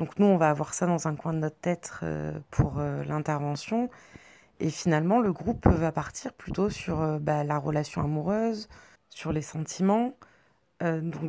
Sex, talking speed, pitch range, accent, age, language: female, 155 wpm, 150-185 Hz, French, 30-49, French